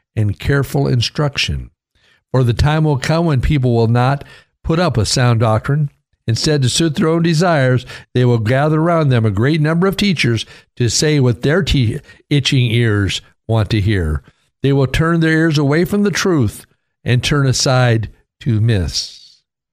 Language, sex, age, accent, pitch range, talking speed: English, male, 60-79, American, 110-150 Hz, 170 wpm